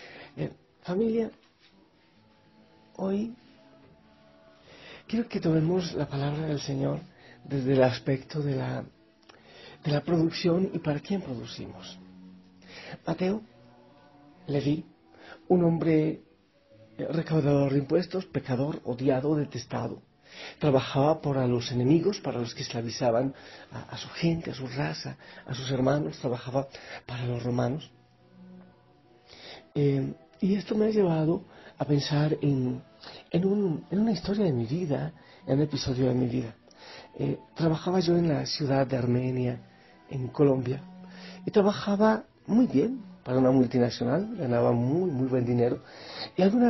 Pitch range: 125-165 Hz